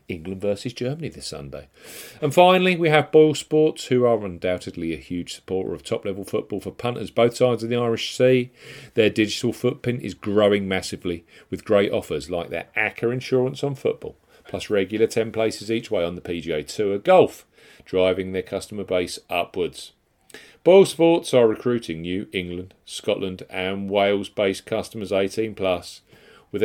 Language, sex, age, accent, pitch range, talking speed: English, male, 40-59, British, 95-120 Hz, 160 wpm